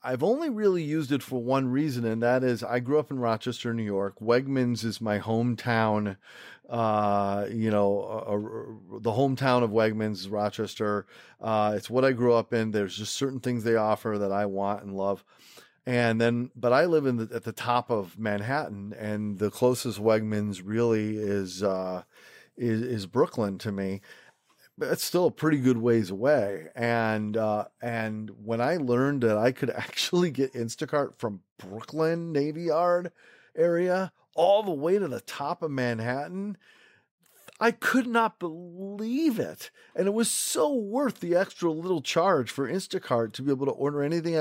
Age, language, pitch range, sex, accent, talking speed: 30-49, English, 110-155 Hz, male, American, 175 wpm